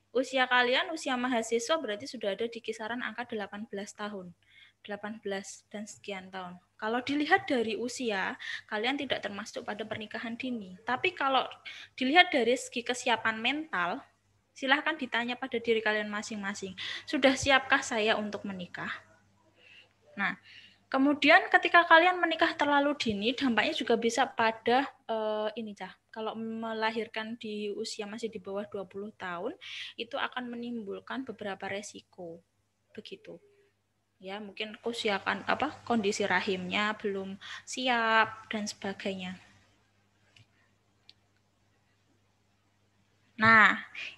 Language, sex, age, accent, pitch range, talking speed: Indonesian, female, 10-29, native, 195-255 Hz, 115 wpm